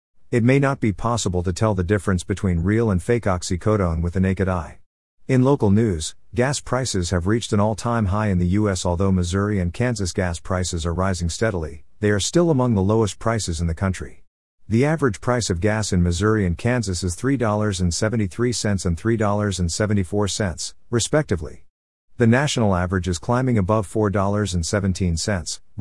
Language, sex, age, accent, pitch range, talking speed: English, male, 50-69, American, 90-110 Hz, 165 wpm